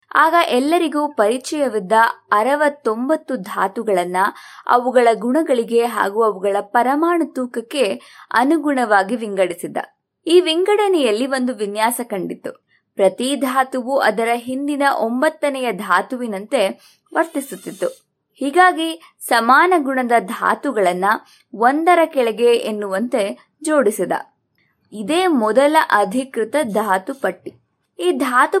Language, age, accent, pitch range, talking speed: Kannada, 20-39, native, 225-310 Hz, 85 wpm